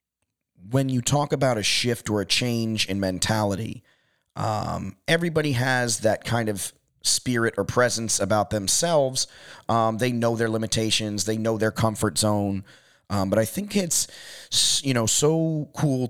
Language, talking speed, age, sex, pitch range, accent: English, 155 wpm, 30-49, male, 100-135 Hz, American